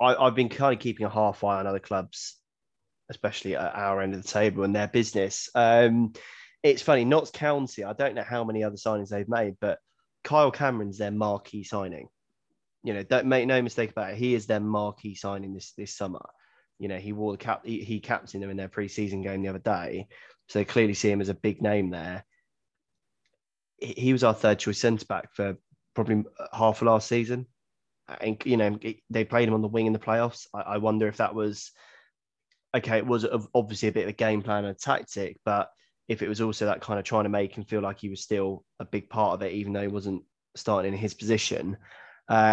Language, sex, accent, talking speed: English, male, British, 225 wpm